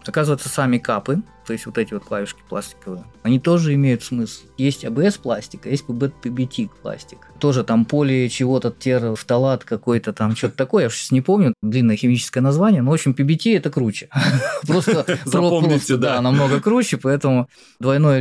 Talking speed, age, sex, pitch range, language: 160 wpm, 20-39, male, 110-140 Hz, Russian